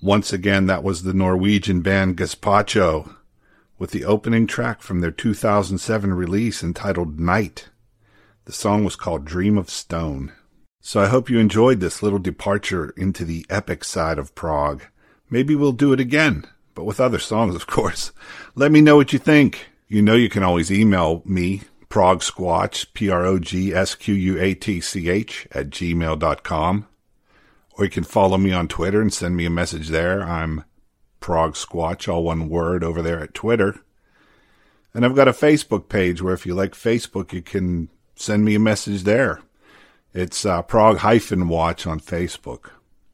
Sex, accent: male, American